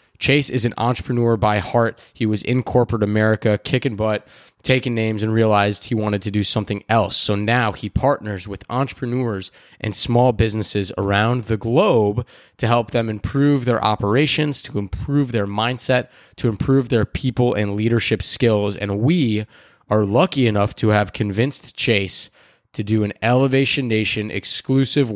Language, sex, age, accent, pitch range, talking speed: English, male, 20-39, American, 105-125 Hz, 160 wpm